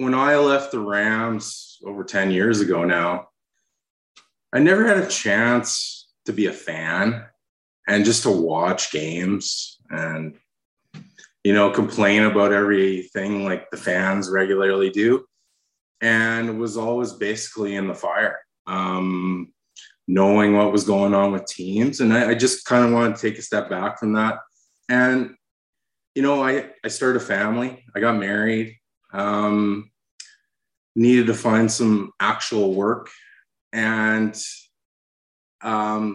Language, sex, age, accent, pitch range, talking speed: English, male, 20-39, American, 95-115 Hz, 140 wpm